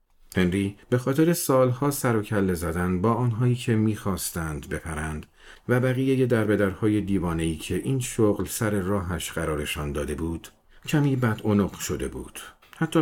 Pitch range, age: 85-125 Hz, 50-69